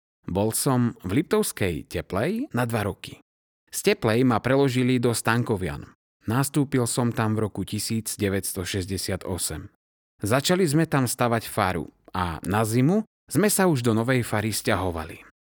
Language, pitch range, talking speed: Slovak, 100-130 Hz, 135 wpm